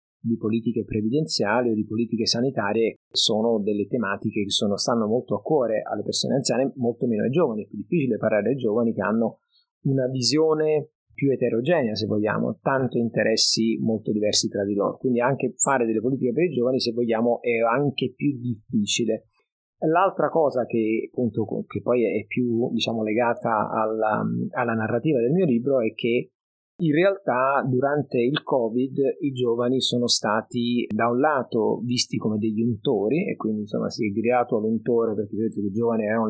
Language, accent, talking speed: Italian, native, 175 wpm